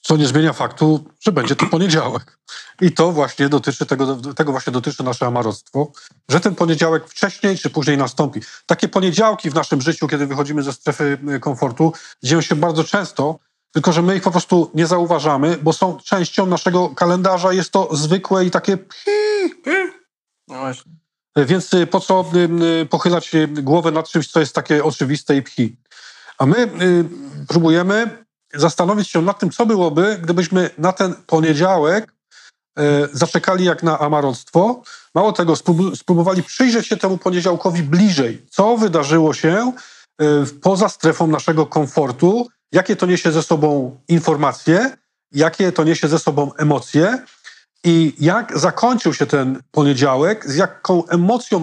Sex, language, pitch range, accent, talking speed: male, Polish, 150-185 Hz, native, 145 wpm